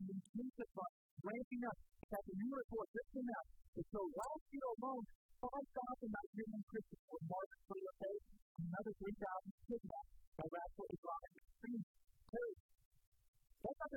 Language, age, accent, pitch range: English, 50-69, American, 200-255 Hz